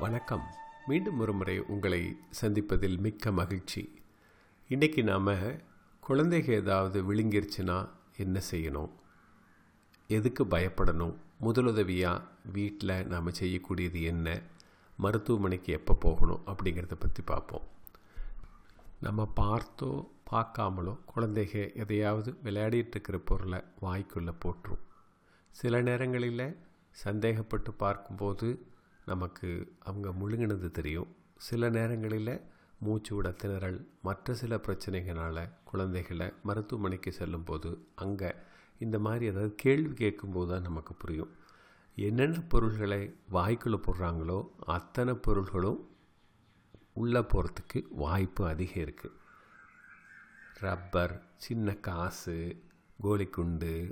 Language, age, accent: Tamil, 40-59, native